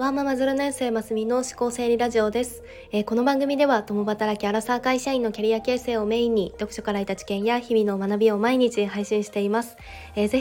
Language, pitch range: Japanese, 195-230 Hz